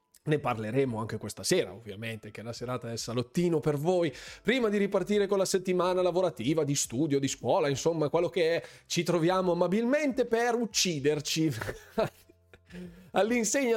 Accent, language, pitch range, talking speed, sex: native, Italian, 150-215 Hz, 150 wpm, male